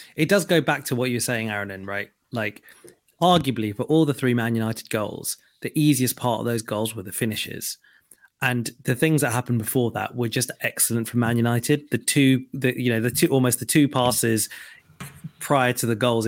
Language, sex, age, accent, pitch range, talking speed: English, male, 20-39, British, 120-145 Hz, 205 wpm